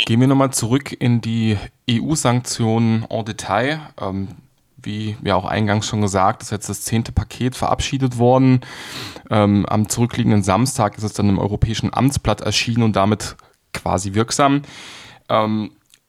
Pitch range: 105-125 Hz